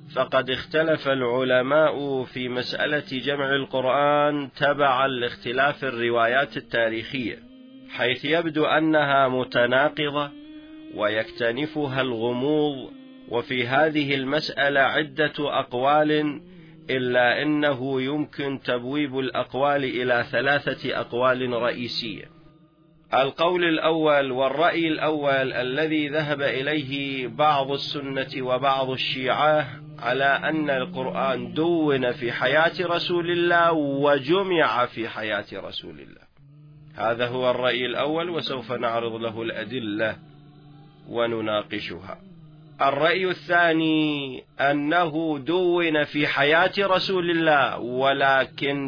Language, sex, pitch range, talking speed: Arabic, male, 130-155 Hz, 90 wpm